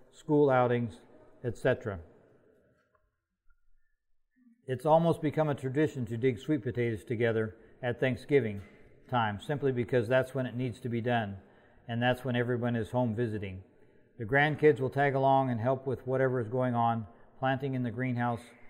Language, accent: English, American